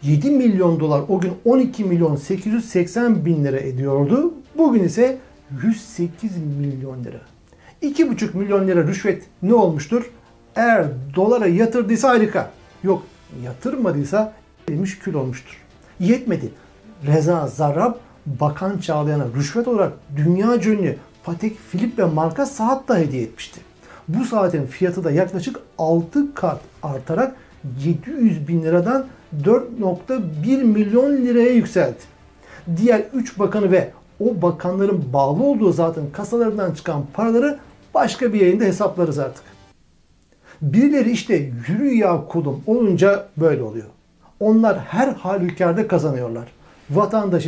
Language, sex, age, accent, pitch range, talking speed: Turkish, male, 60-79, native, 155-225 Hz, 115 wpm